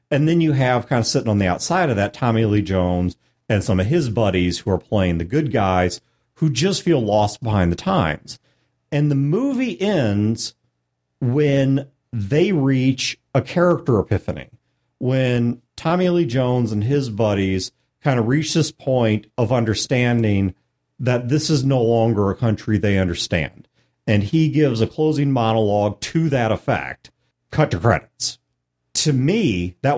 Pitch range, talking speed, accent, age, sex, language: 105-145 Hz, 160 wpm, American, 40-59, male, English